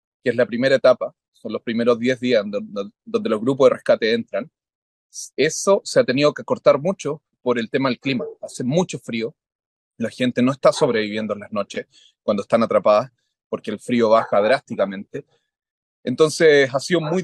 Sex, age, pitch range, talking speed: male, 30-49, 110-140 Hz, 180 wpm